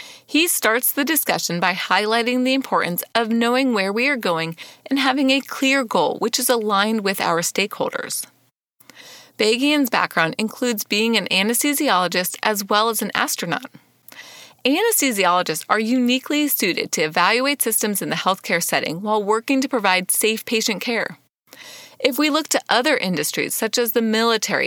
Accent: American